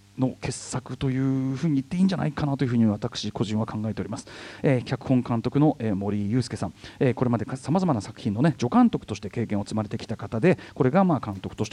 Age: 40-59